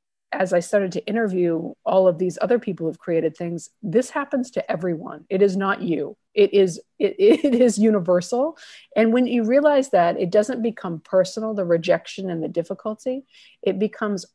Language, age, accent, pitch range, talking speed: English, 50-69, American, 175-220 Hz, 180 wpm